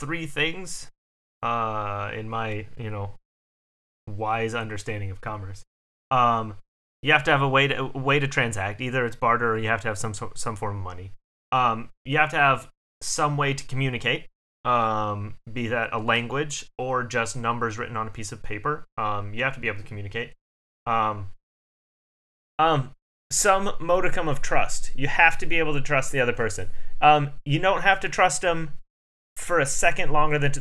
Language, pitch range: English, 105-140 Hz